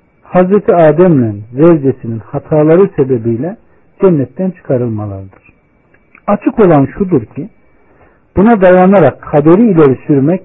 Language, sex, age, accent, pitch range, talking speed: Turkish, male, 60-79, native, 120-185 Hz, 90 wpm